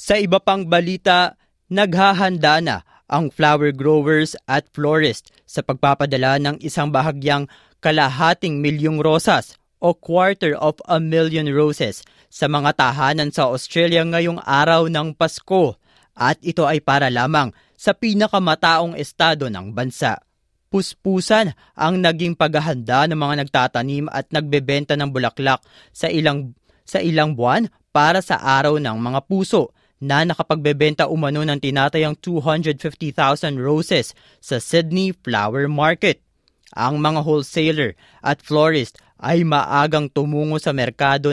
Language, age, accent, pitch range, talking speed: Filipino, 20-39, native, 135-165 Hz, 125 wpm